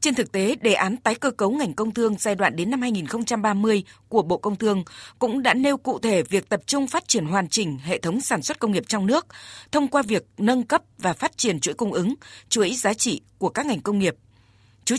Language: Vietnamese